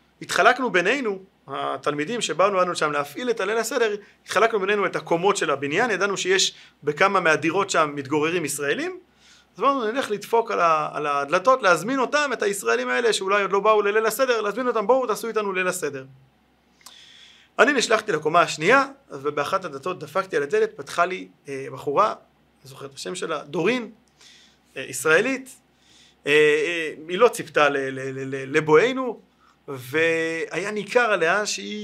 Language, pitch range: Hebrew, 155-250 Hz